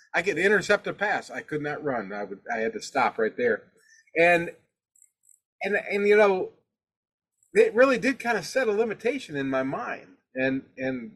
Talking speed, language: 190 wpm, English